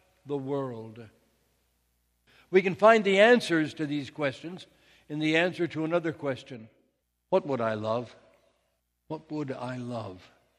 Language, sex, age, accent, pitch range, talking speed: English, male, 60-79, American, 125-180 Hz, 135 wpm